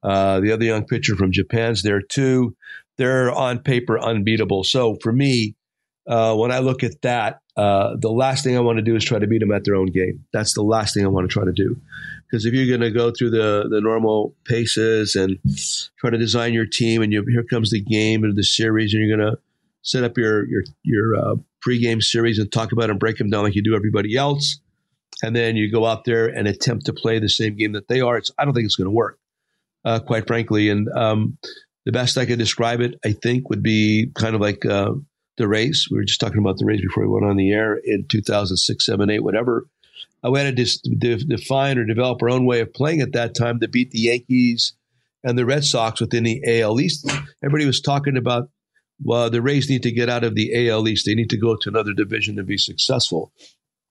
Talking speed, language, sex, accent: 240 wpm, English, male, American